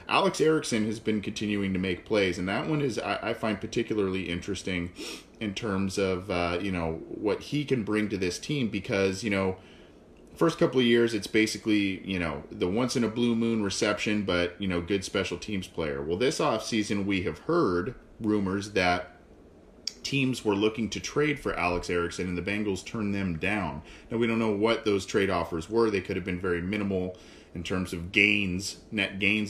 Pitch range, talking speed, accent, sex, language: 90-110 Hz, 190 wpm, American, male, English